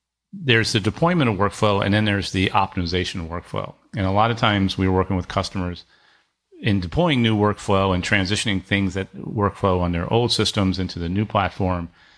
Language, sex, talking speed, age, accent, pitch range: English, male, 180 wpm, 40-59, American, 95-110 Hz